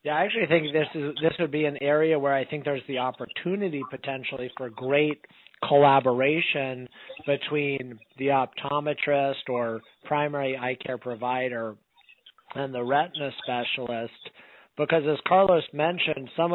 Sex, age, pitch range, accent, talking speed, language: male, 40-59, 125-150 Hz, American, 140 wpm, English